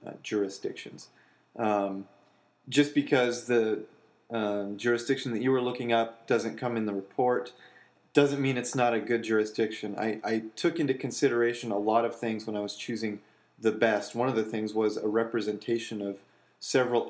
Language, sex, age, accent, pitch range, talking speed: English, male, 30-49, American, 105-125 Hz, 170 wpm